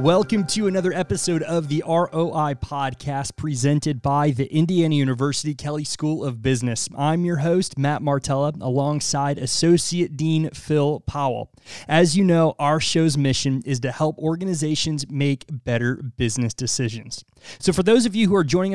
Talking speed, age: 155 wpm, 30-49